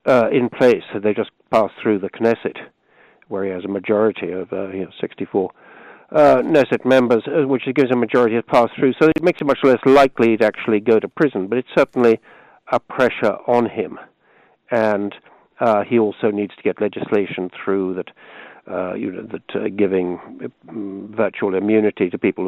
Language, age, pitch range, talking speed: English, 60-79, 100-120 Hz, 185 wpm